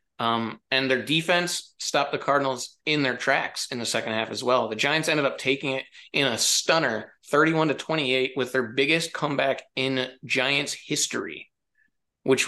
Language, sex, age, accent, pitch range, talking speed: English, male, 30-49, American, 120-145 Hz, 175 wpm